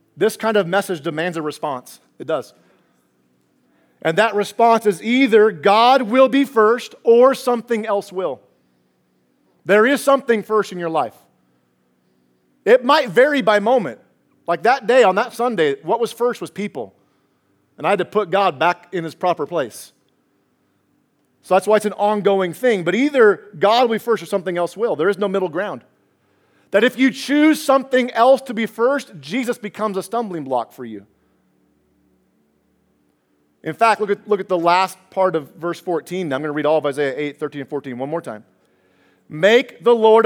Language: English